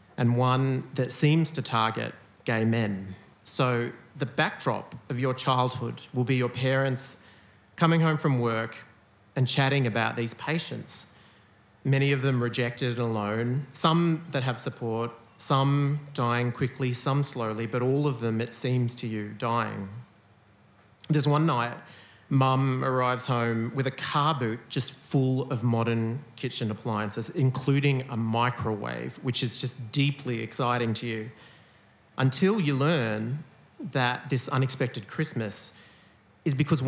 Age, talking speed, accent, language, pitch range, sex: 30-49, 140 wpm, Australian, English, 115-140 Hz, male